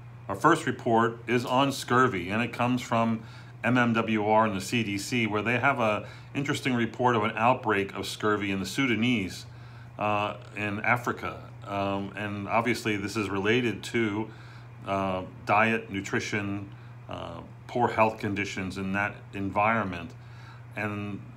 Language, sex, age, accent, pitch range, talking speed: English, male, 40-59, American, 105-120 Hz, 140 wpm